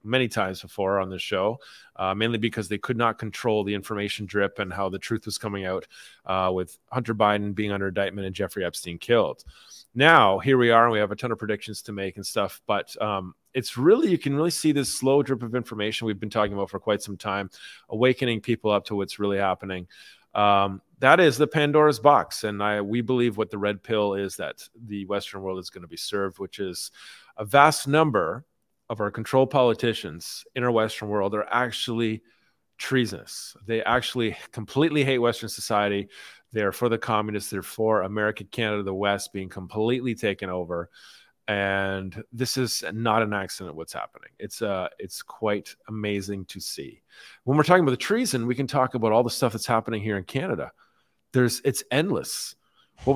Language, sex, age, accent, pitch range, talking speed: English, male, 30-49, American, 100-120 Hz, 195 wpm